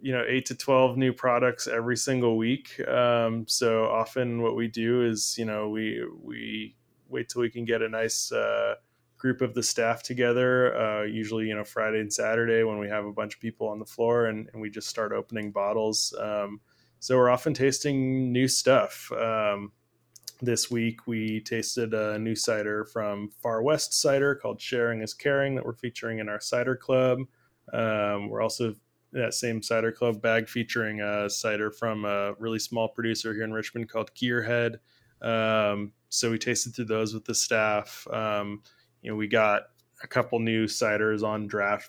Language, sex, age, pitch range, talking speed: English, male, 20-39, 110-120 Hz, 190 wpm